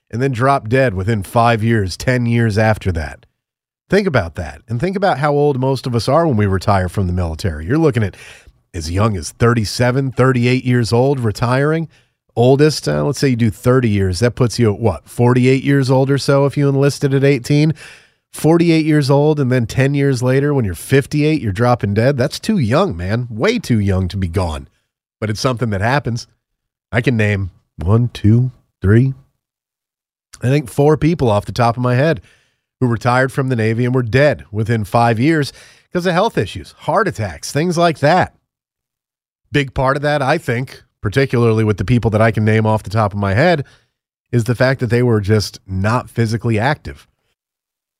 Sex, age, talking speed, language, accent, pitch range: male, 30-49, 200 wpm, English, American, 110-140 Hz